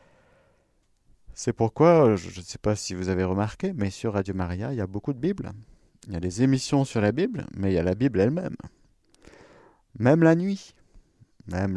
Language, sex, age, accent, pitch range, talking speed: French, male, 50-69, French, 90-135 Hz, 200 wpm